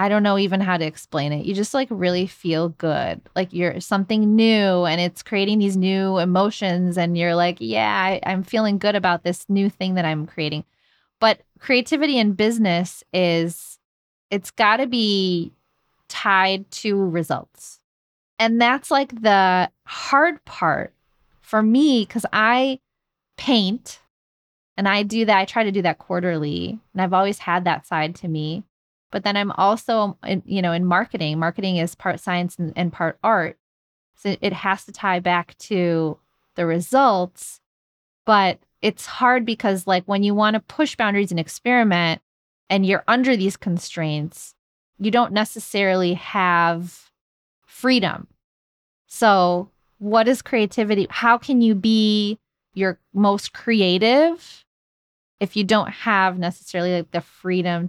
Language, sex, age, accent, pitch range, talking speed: English, female, 20-39, American, 175-215 Hz, 150 wpm